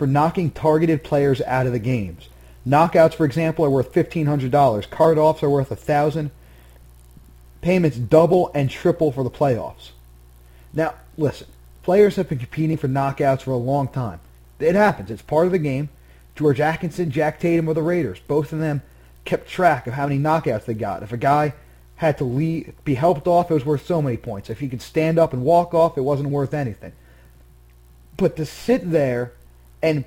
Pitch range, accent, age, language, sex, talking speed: 120-165 Hz, American, 30-49, English, male, 190 wpm